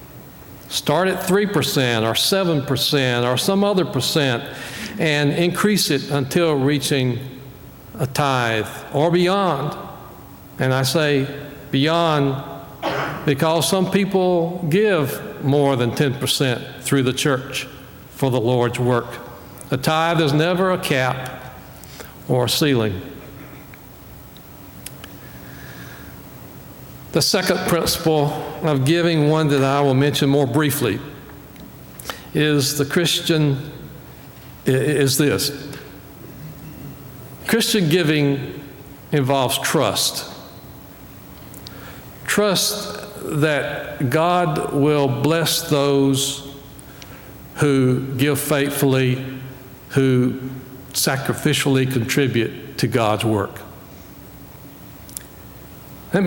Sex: male